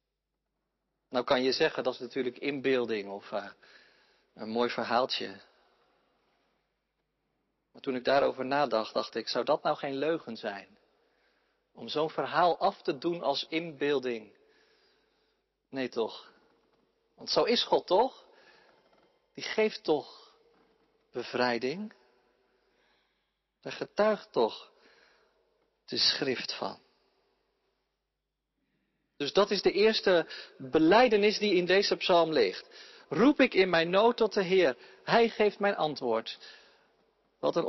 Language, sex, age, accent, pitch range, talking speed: Dutch, male, 50-69, Dutch, 145-225 Hz, 120 wpm